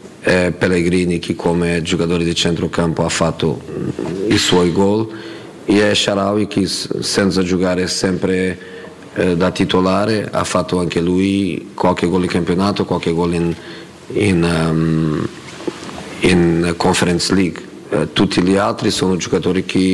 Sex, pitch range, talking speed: male, 85-95 Hz, 130 wpm